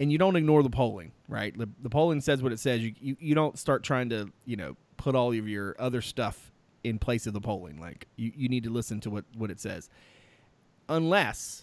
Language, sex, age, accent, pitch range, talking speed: English, male, 30-49, American, 115-145 Hz, 230 wpm